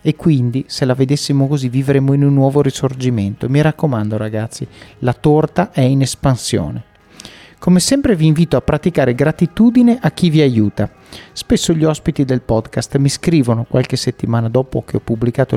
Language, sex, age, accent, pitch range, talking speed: Italian, male, 40-59, native, 125-175 Hz, 165 wpm